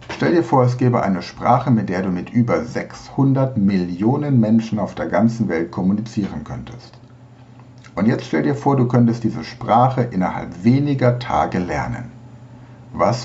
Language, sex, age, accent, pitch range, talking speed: German, male, 60-79, German, 105-125 Hz, 160 wpm